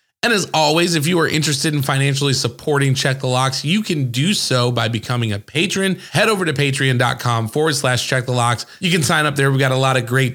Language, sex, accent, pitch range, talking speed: English, male, American, 125-155 Hz, 240 wpm